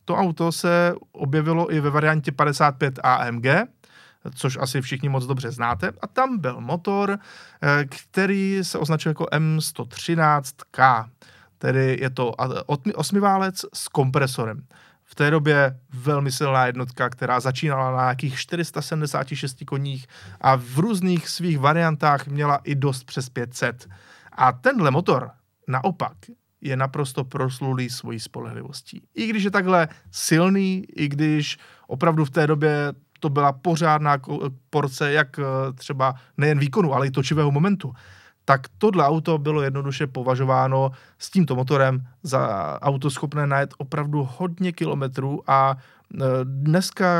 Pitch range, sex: 135-160 Hz, male